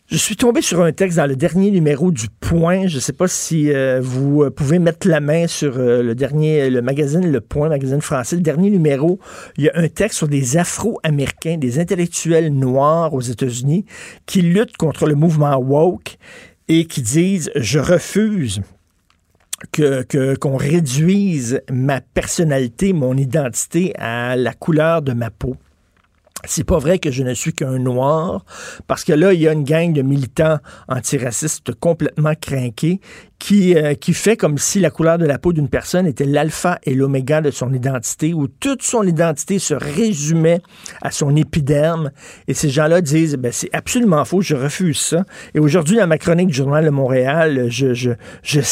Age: 50-69